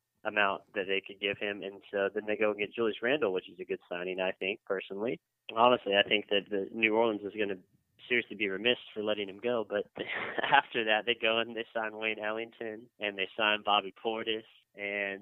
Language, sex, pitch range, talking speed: English, male, 100-115 Hz, 220 wpm